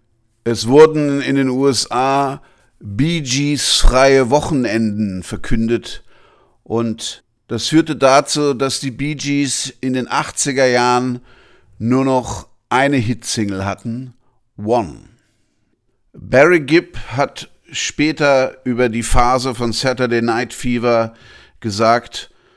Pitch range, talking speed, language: 115-135 Hz, 105 wpm, German